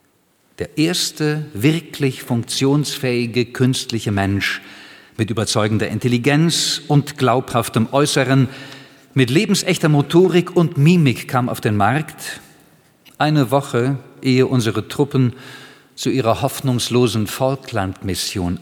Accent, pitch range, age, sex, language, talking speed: German, 110-145 Hz, 50-69, male, German, 95 wpm